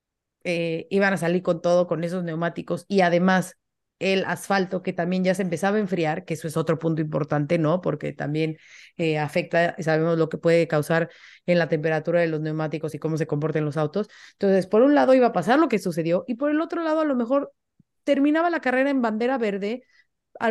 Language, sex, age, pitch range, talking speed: Spanish, female, 30-49, 170-205 Hz, 215 wpm